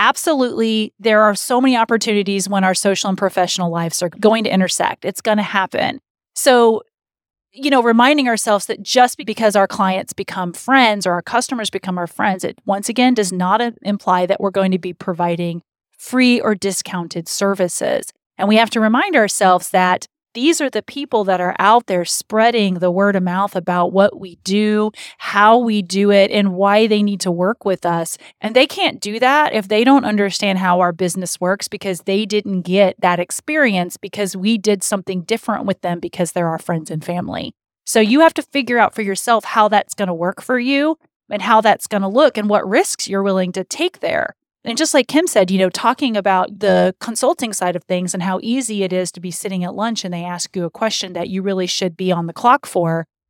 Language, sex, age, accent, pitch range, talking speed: English, female, 30-49, American, 185-235 Hz, 215 wpm